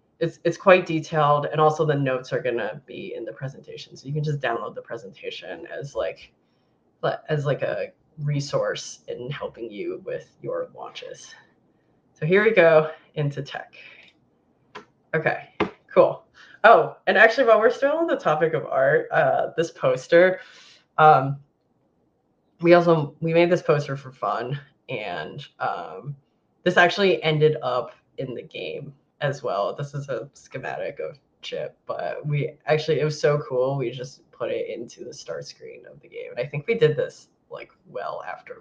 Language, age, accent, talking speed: English, 20-39, American, 170 wpm